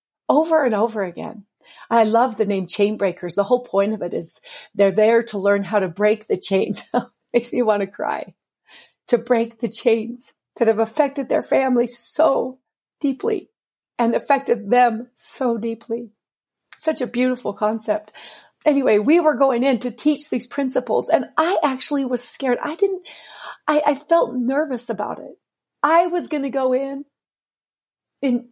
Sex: female